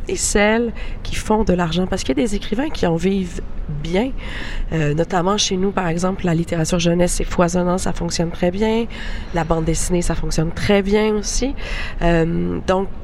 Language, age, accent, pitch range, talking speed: French, 30-49, Canadian, 165-205 Hz, 190 wpm